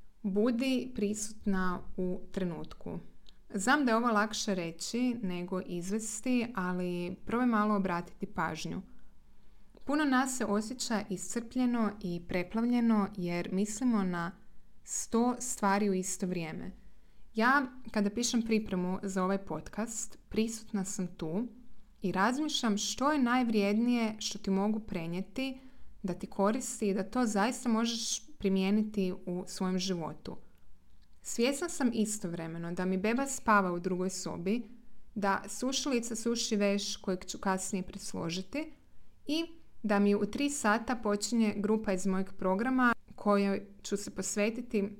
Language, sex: Croatian, female